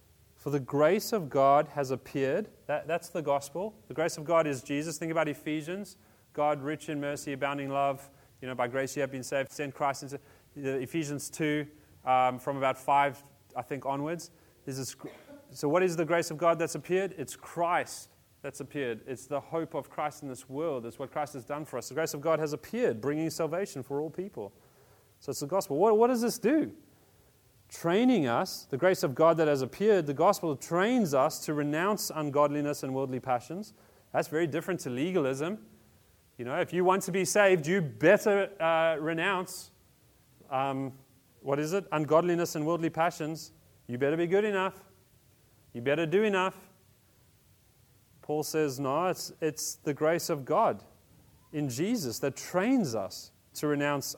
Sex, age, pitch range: male, 30-49, 135-170 Hz